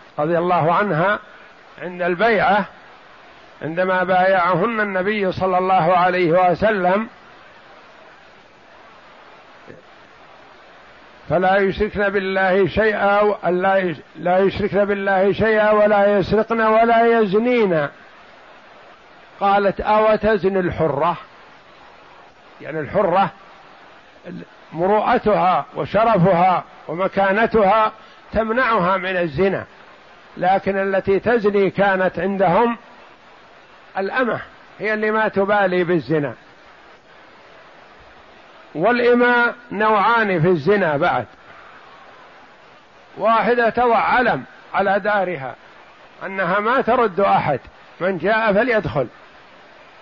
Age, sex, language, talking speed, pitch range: 60-79, male, Arabic, 75 wpm, 185-215 Hz